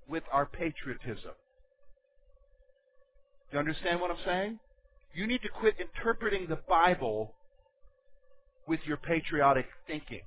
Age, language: 50-69, English